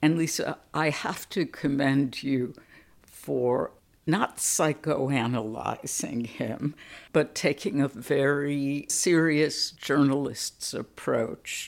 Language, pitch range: English, 130-165 Hz